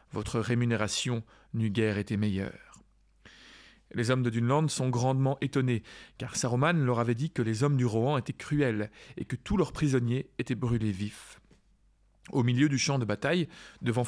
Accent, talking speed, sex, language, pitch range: French, 170 wpm, male, French, 115-145 Hz